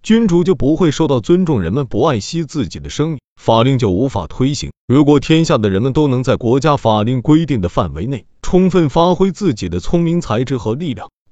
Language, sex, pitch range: Chinese, male, 115-165 Hz